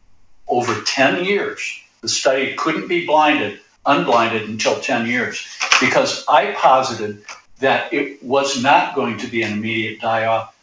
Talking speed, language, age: 145 wpm, English, 60-79